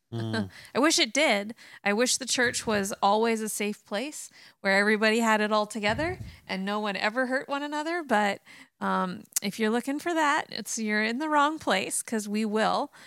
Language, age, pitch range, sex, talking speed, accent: English, 30-49, 185-220 Hz, female, 195 wpm, American